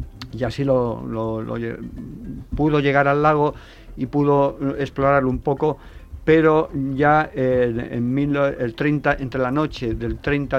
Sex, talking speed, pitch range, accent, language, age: male, 100 wpm, 115-140 Hz, Spanish, Spanish, 50-69